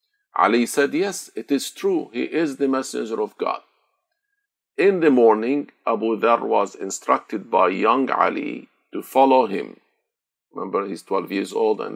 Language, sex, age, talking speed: Arabic, male, 50-69, 160 wpm